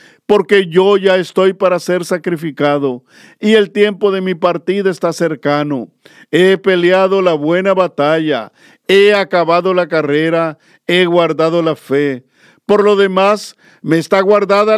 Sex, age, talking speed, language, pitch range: male, 50-69, 140 wpm, Spanish, 150-190 Hz